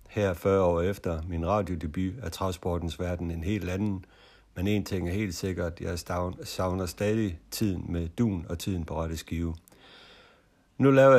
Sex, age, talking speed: male, 60-79, 170 wpm